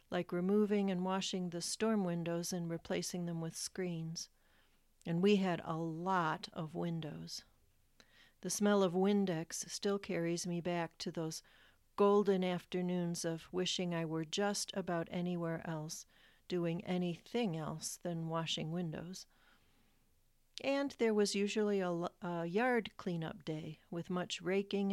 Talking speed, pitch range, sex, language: 135 wpm, 165-190 Hz, female, English